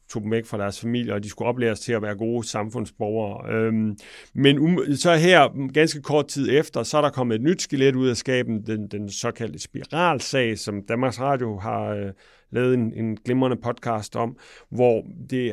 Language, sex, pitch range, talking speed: English, male, 110-140 Hz, 180 wpm